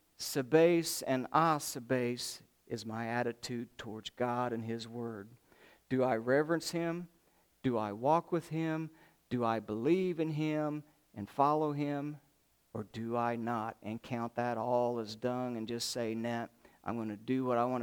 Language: English